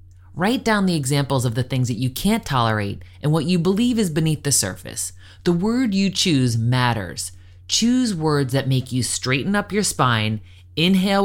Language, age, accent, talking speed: English, 30-49, American, 180 wpm